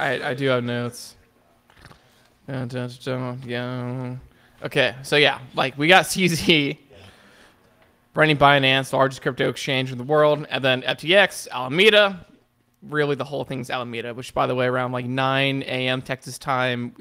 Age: 20-39